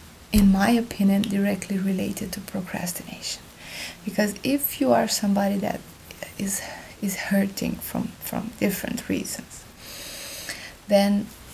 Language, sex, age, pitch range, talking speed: English, female, 20-39, 190-215 Hz, 110 wpm